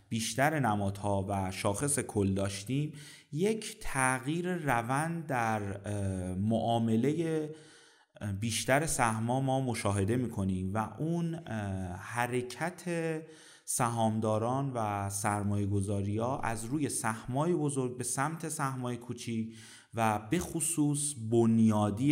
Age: 30-49